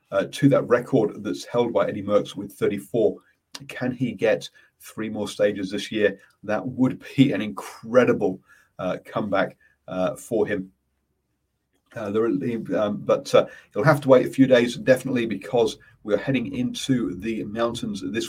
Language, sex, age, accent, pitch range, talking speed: English, male, 40-59, British, 90-120 Hz, 160 wpm